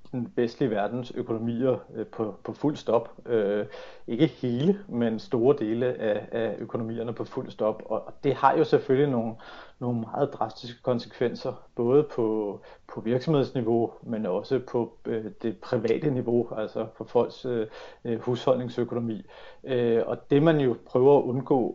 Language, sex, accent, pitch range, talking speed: Danish, male, native, 115-130 Hz, 140 wpm